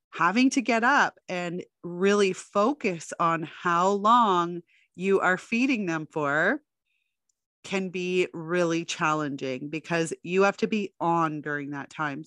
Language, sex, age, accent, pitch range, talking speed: English, female, 30-49, American, 160-205 Hz, 135 wpm